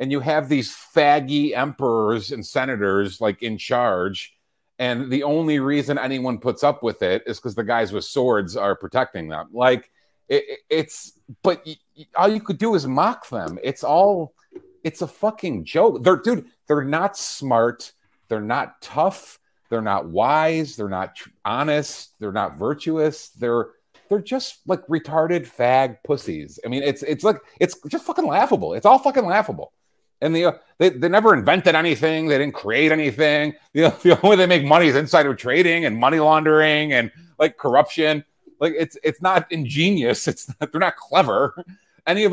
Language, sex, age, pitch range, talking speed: English, male, 40-59, 135-180 Hz, 175 wpm